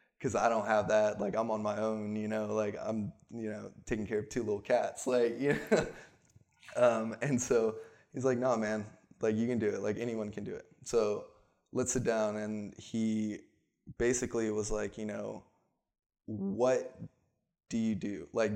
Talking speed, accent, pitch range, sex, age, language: 190 wpm, American, 105-115 Hz, male, 20-39, English